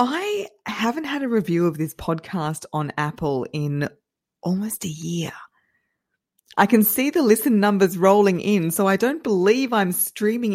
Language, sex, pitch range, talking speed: English, female, 170-220 Hz, 160 wpm